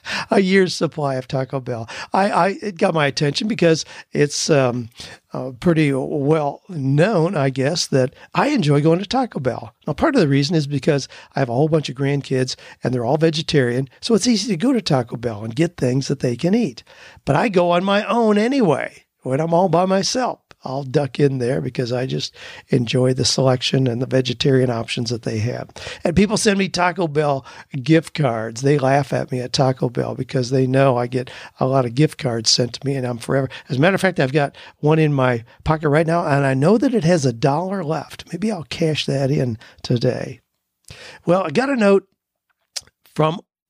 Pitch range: 130-175 Hz